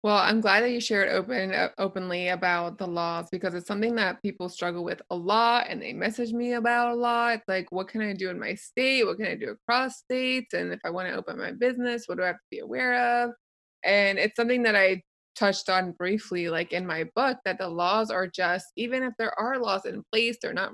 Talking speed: 245 wpm